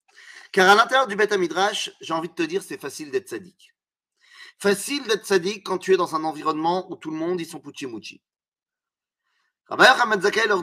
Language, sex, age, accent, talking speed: French, male, 40-59, French, 190 wpm